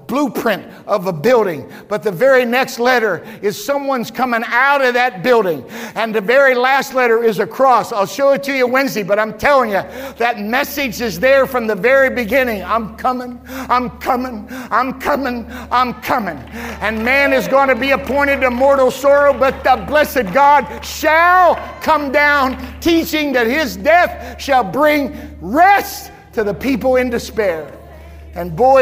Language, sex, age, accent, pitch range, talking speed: English, male, 50-69, American, 235-290 Hz, 170 wpm